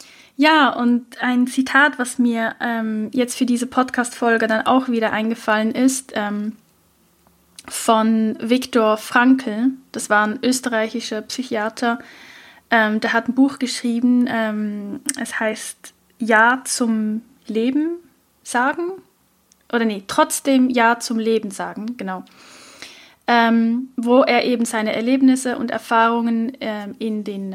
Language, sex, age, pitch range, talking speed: German, female, 10-29, 220-255 Hz, 125 wpm